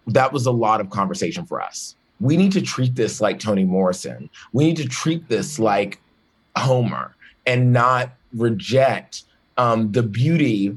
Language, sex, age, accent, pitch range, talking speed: English, male, 30-49, American, 110-140 Hz, 160 wpm